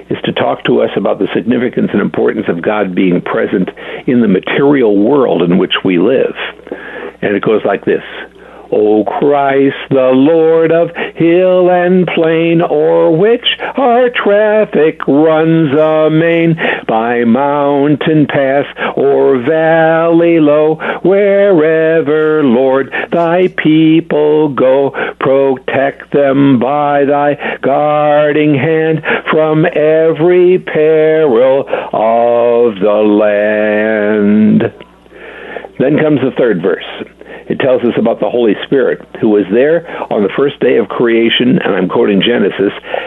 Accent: American